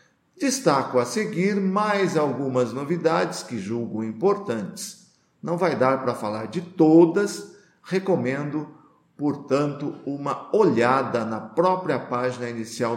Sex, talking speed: male, 110 wpm